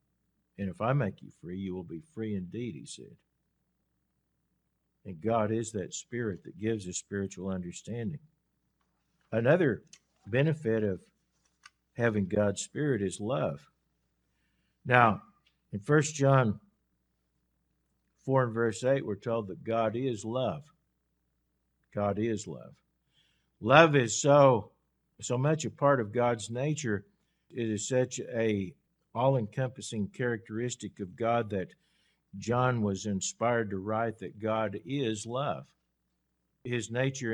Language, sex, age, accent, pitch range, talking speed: English, male, 50-69, American, 100-125 Hz, 125 wpm